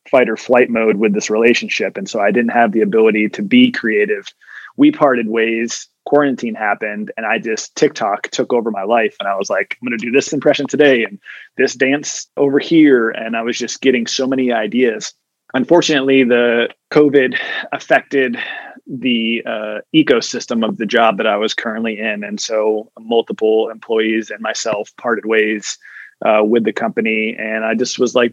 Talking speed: 180 wpm